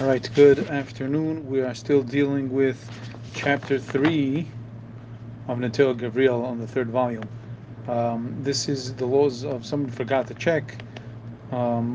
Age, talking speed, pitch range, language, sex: 30-49, 140 wpm, 120-140 Hz, English, male